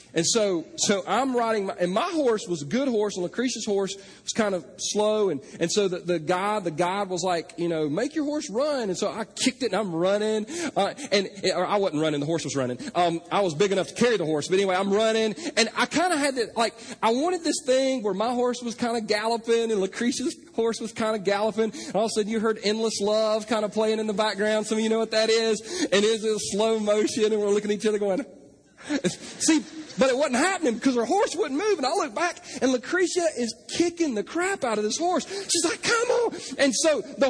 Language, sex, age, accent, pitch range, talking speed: English, male, 40-59, American, 205-265 Hz, 255 wpm